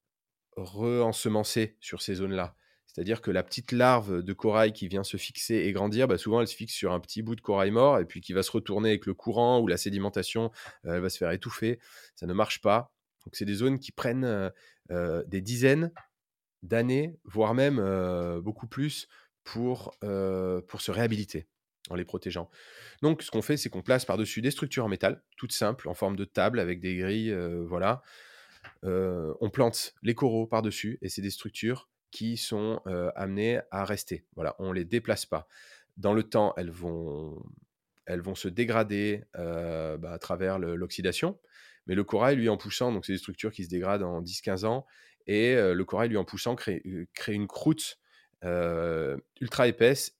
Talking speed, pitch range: 190 wpm, 90-115 Hz